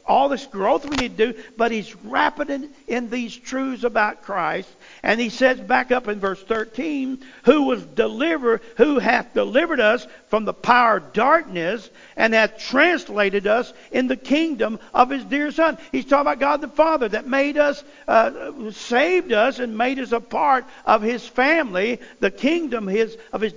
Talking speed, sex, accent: 185 wpm, male, American